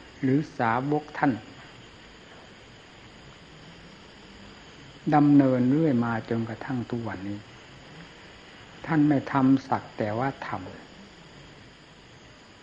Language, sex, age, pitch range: Thai, male, 60-79, 115-145 Hz